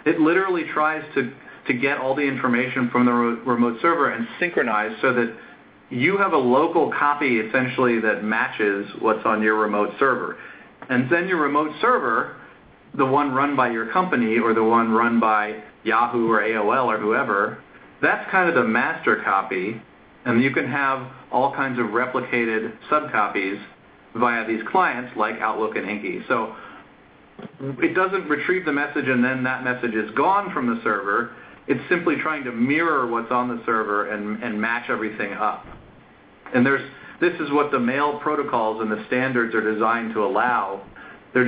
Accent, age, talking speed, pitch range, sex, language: American, 40-59, 170 wpm, 115-135 Hz, male, English